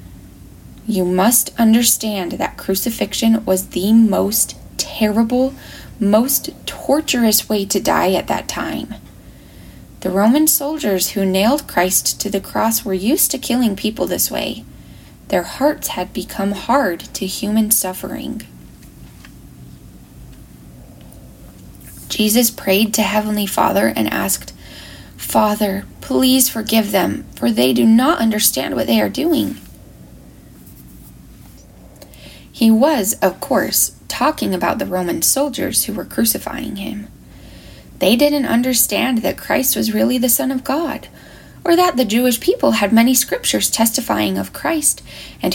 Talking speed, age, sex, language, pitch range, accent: 130 wpm, 10-29, female, English, 185-255 Hz, American